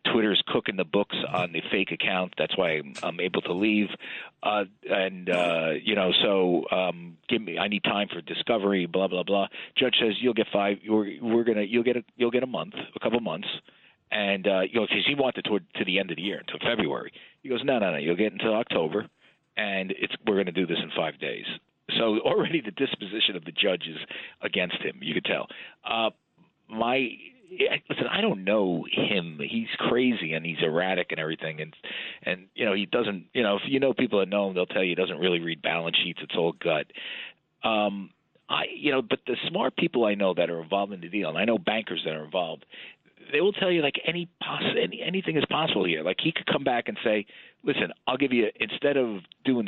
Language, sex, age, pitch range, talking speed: English, male, 40-59, 90-115 Hz, 220 wpm